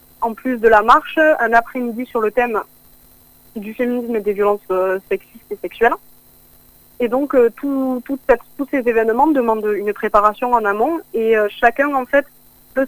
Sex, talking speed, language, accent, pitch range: female, 180 wpm, French, French, 215-255 Hz